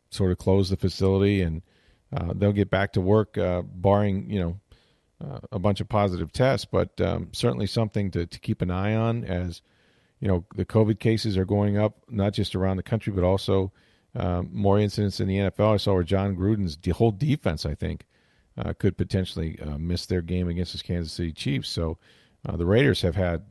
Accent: American